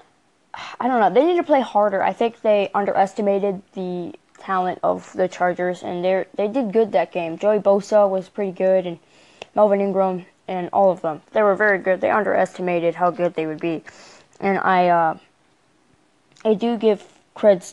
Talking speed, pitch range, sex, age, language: 185 wpm, 180-220 Hz, female, 20-39, English